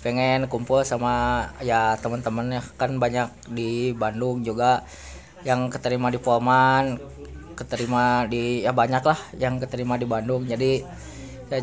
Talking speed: 130 wpm